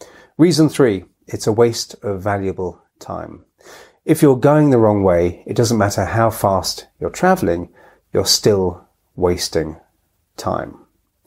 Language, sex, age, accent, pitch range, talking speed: English, male, 30-49, British, 100-120 Hz, 135 wpm